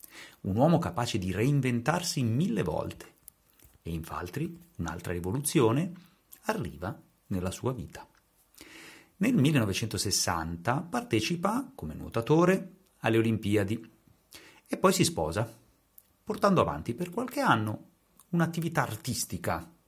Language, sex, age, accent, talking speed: Italian, male, 40-59, native, 100 wpm